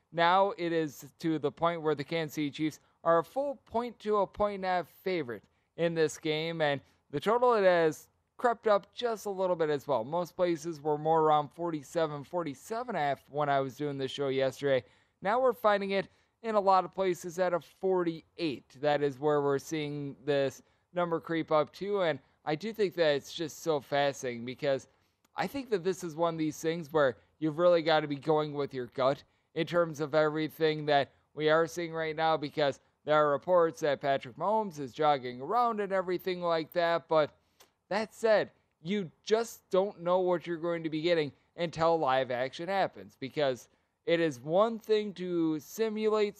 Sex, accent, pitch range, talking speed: male, American, 145-190 Hz, 195 wpm